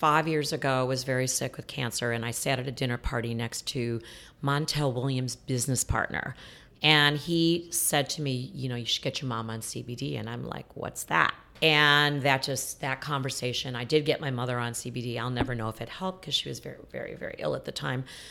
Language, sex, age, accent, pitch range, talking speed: English, female, 40-59, American, 130-155 Hz, 225 wpm